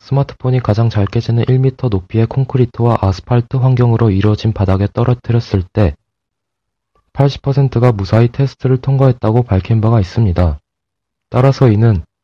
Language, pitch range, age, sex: Korean, 100-125 Hz, 20-39, male